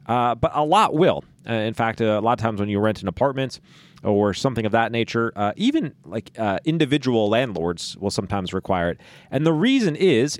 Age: 30-49